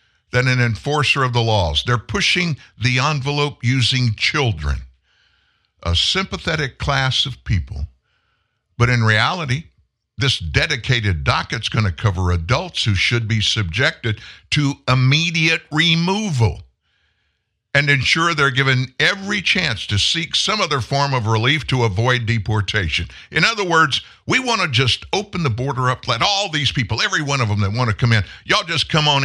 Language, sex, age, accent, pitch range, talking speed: English, male, 60-79, American, 110-150 Hz, 160 wpm